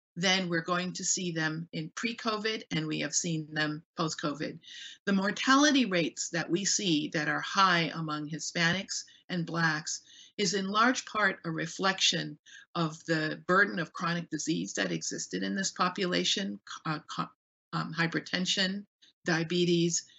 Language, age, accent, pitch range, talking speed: English, 50-69, American, 155-185 Hz, 145 wpm